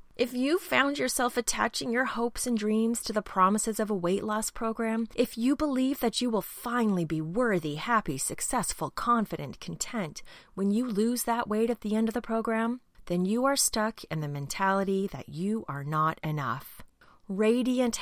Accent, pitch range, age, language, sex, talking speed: American, 165-240 Hz, 30-49, English, female, 180 wpm